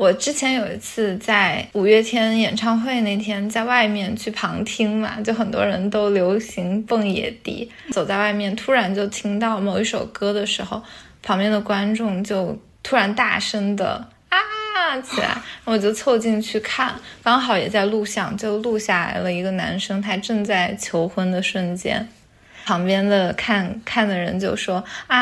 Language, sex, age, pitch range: Chinese, female, 20-39, 195-230 Hz